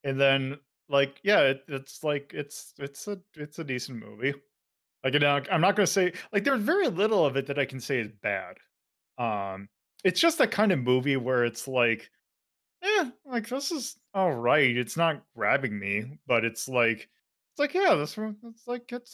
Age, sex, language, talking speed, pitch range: 20-39, male, English, 195 wpm, 120-180 Hz